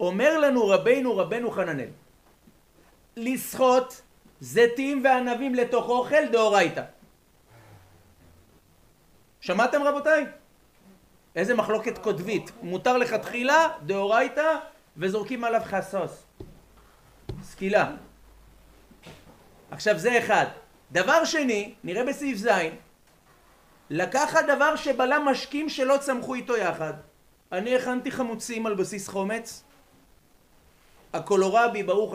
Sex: male